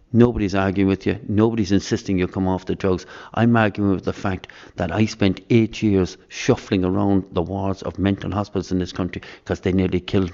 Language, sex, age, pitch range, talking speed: English, male, 50-69, 95-110 Hz, 205 wpm